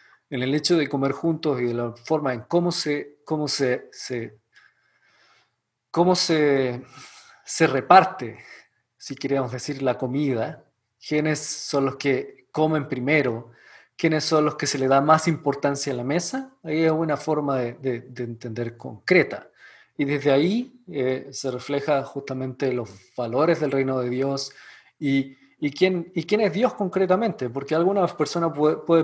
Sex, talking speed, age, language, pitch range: male, 160 wpm, 40-59, Spanish, 140-170 Hz